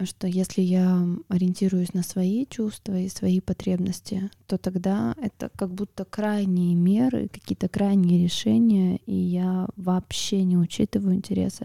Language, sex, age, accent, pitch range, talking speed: Russian, female, 20-39, native, 180-205 Hz, 135 wpm